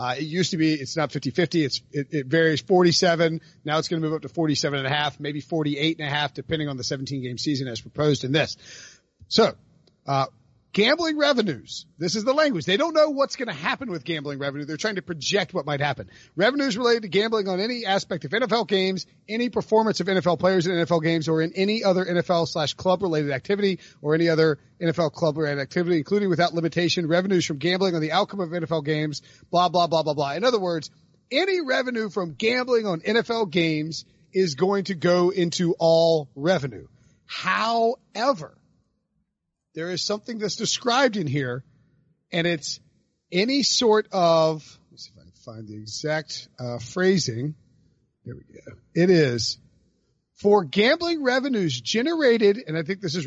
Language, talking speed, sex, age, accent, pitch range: English, 185 wpm, male, 40-59, American, 150-200 Hz